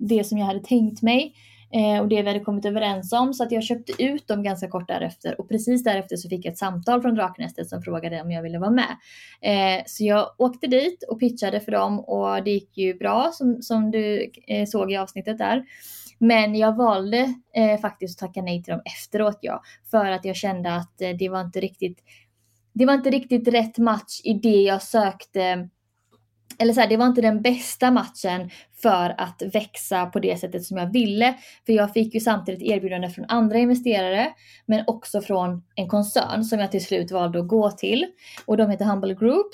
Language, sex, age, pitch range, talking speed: Swedish, female, 20-39, 185-225 Hz, 205 wpm